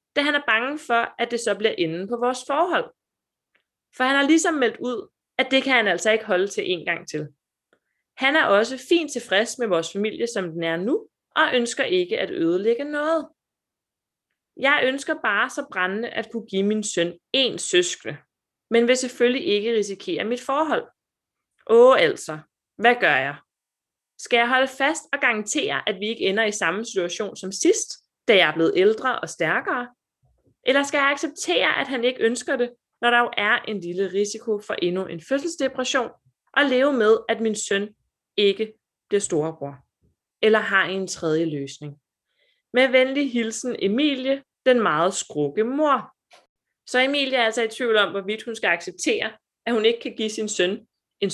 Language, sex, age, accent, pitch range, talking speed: Danish, female, 20-39, native, 200-270 Hz, 180 wpm